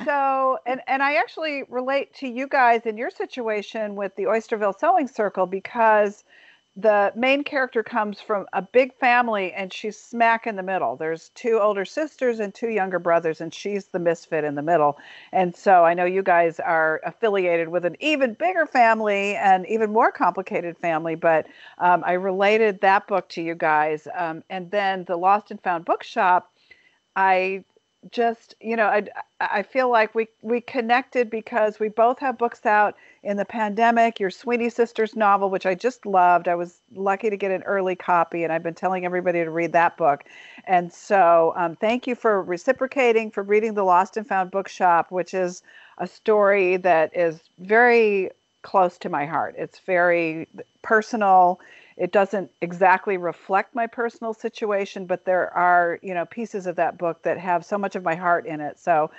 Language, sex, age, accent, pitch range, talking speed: English, female, 50-69, American, 175-225 Hz, 185 wpm